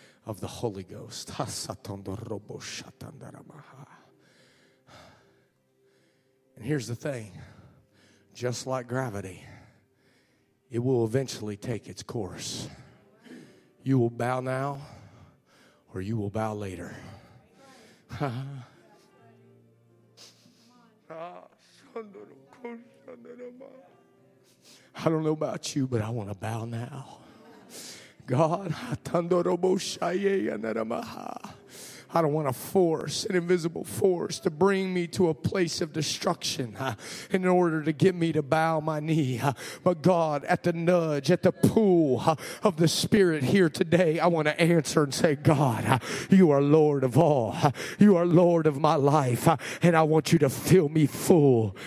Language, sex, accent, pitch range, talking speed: English, male, American, 120-170 Hz, 120 wpm